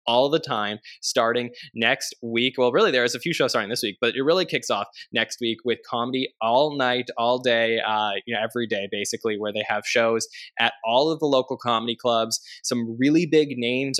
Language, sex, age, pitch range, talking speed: English, male, 20-39, 105-125 Hz, 210 wpm